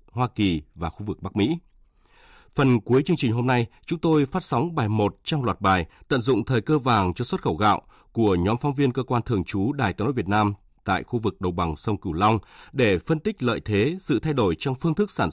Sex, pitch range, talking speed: male, 95-140 Hz, 250 wpm